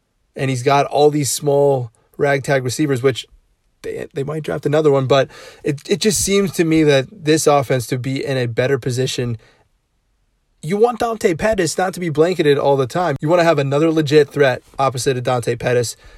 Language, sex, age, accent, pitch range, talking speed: English, male, 20-39, American, 130-160 Hz, 195 wpm